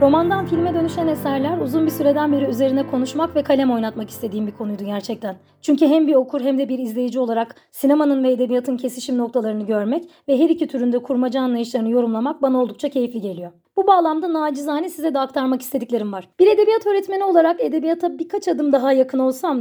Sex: female